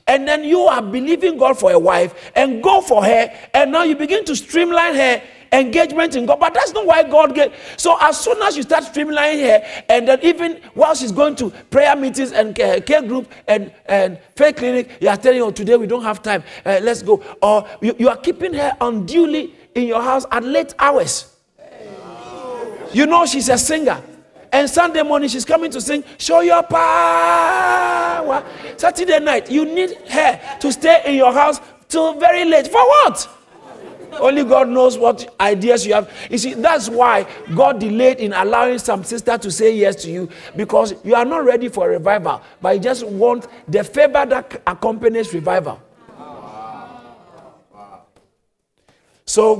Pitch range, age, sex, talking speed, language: 225-305 Hz, 50-69, male, 180 wpm, English